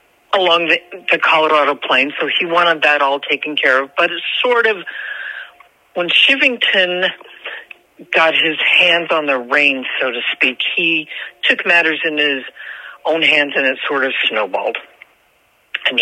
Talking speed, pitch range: 155 wpm, 135-175 Hz